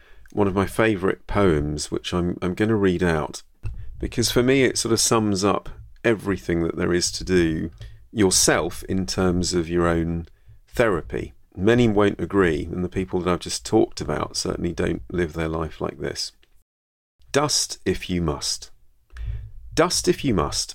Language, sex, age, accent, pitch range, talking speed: English, male, 40-59, British, 75-105 Hz, 170 wpm